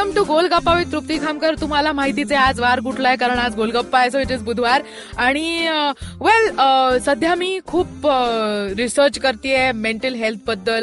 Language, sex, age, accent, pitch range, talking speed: Marathi, female, 20-39, native, 235-335 Hz, 145 wpm